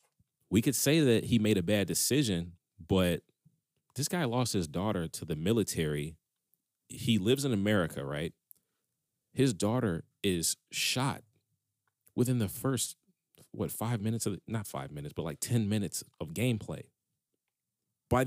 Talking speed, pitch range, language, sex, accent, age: 145 wpm, 95-130 Hz, English, male, American, 40-59